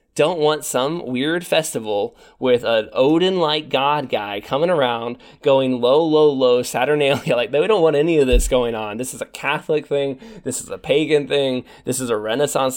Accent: American